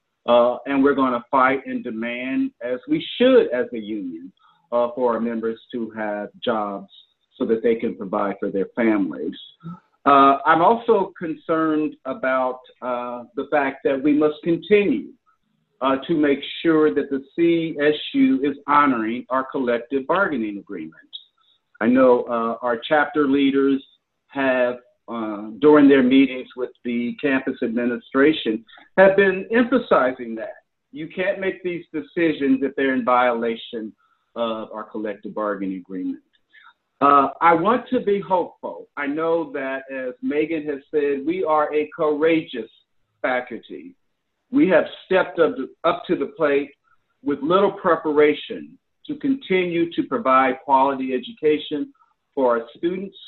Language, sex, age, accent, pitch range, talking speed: English, male, 50-69, American, 125-170 Hz, 140 wpm